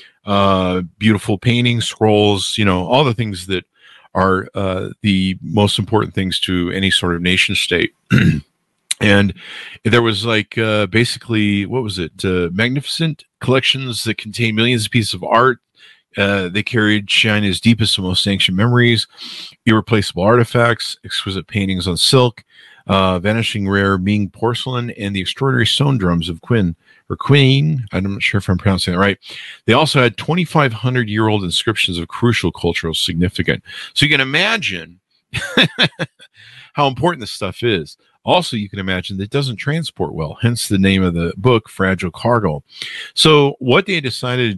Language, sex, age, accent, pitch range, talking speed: English, male, 50-69, American, 95-115 Hz, 160 wpm